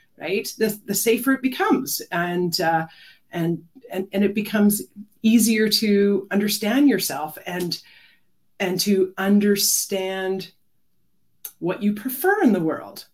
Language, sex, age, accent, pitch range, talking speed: English, female, 30-49, American, 175-235 Hz, 125 wpm